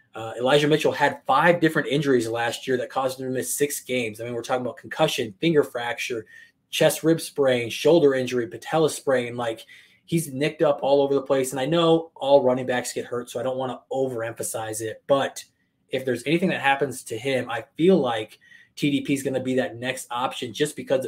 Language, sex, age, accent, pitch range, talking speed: English, male, 20-39, American, 125-145 Hz, 215 wpm